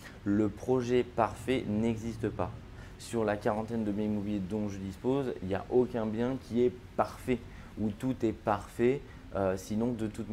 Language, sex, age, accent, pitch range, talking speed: French, male, 20-39, French, 105-120 Hz, 175 wpm